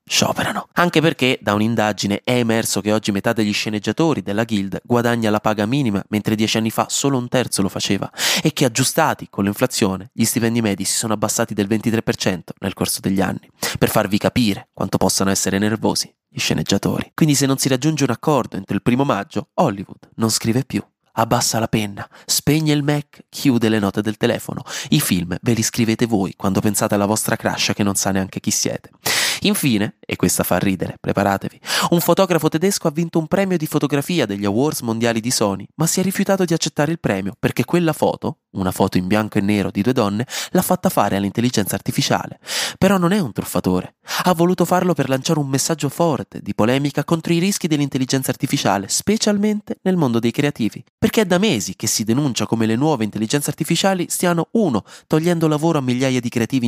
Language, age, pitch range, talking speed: Italian, 20-39, 105-155 Hz, 195 wpm